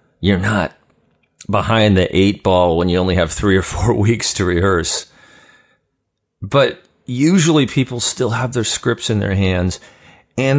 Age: 40-59